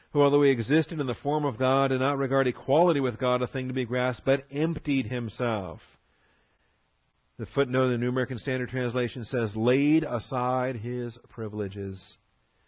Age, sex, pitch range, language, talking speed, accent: 40-59, male, 115-150 Hz, English, 170 wpm, American